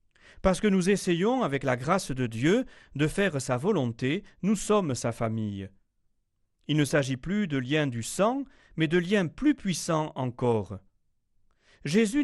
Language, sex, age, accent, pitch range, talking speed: French, male, 40-59, French, 115-175 Hz, 155 wpm